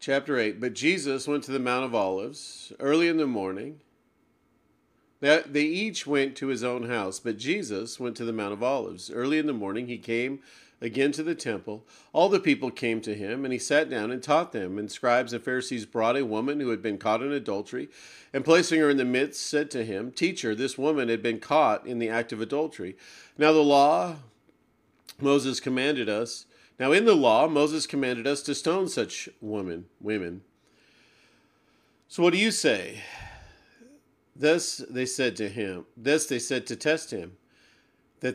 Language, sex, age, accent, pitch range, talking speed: English, male, 40-59, American, 115-150 Hz, 185 wpm